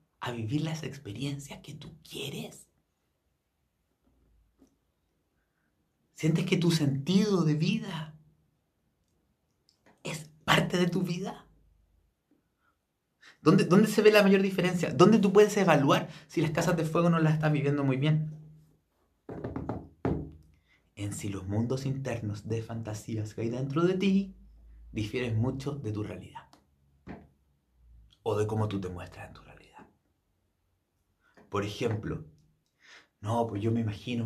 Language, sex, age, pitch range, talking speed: Spanish, male, 30-49, 100-155 Hz, 125 wpm